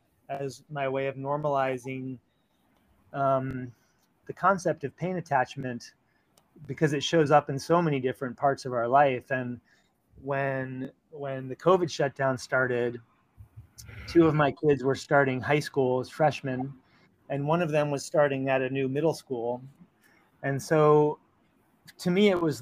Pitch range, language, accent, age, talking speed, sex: 130-155 Hz, English, American, 30-49, 150 wpm, male